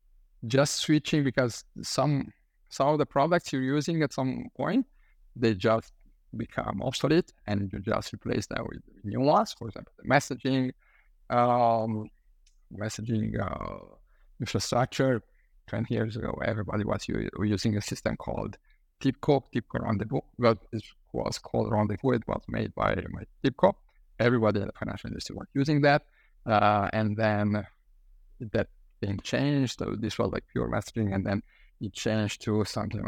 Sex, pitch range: male, 105-130 Hz